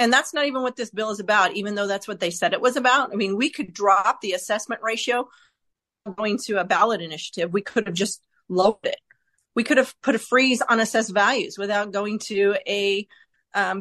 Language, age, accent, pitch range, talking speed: English, 40-59, American, 200-250 Hz, 225 wpm